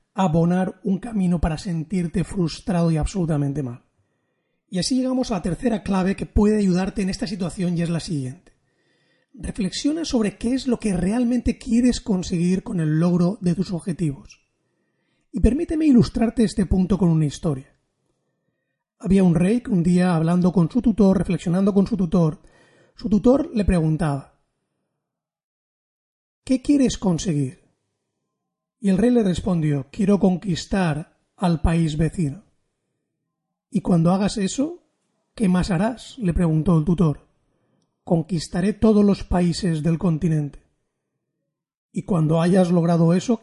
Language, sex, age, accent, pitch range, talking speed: Spanish, male, 30-49, Spanish, 165-205 Hz, 140 wpm